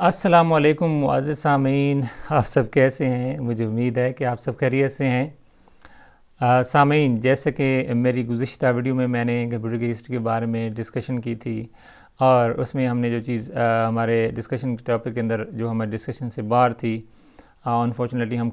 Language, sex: Urdu, male